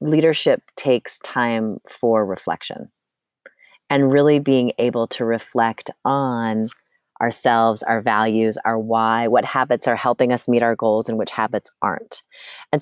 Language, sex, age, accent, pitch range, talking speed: English, female, 30-49, American, 115-155 Hz, 140 wpm